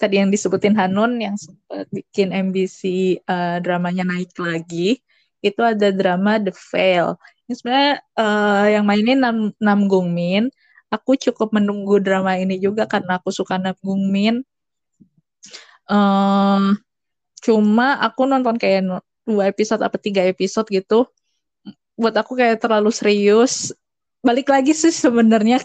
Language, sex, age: Indonesian, female, 20-39